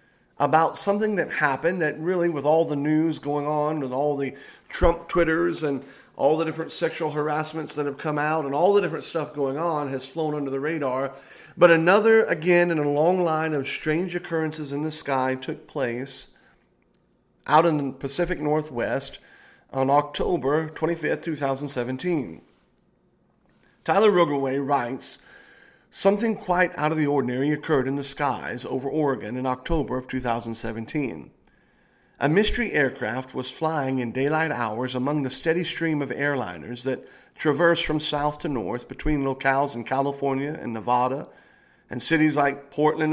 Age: 40-59